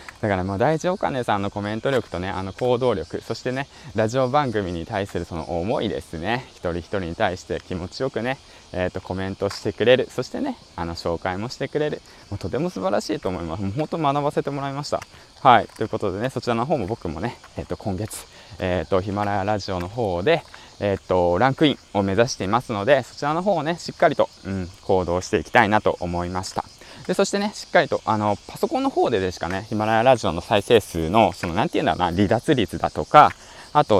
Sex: male